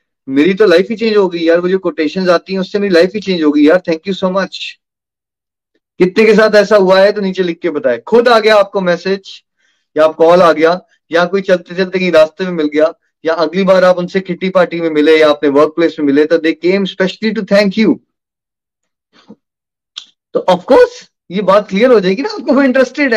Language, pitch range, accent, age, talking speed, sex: Hindi, 160-225 Hz, native, 30-49, 175 wpm, male